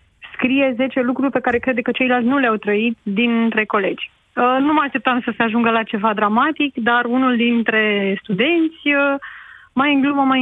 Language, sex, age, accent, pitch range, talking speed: Romanian, female, 30-49, native, 235-280 Hz, 185 wpm